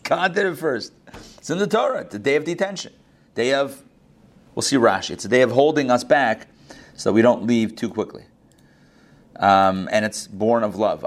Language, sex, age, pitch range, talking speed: English, male, 40-59, 110-140 Hz, 195 wpm